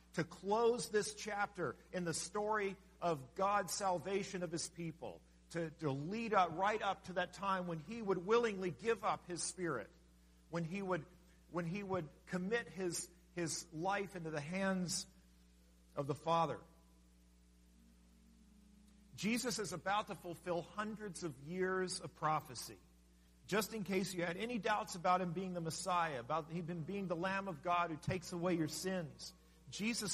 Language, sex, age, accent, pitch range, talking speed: English, male, 50-69, American, 160-200 Hz, 160 wpm